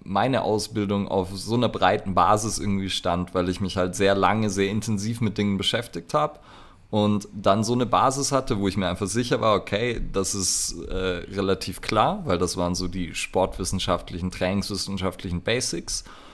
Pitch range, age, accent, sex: 90-105 Hz, 30-49, German, male